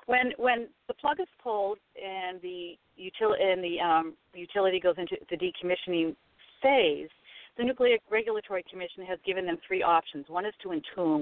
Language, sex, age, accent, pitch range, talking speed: English, female, 50-69, American, 160-235 Hz, 165 wpm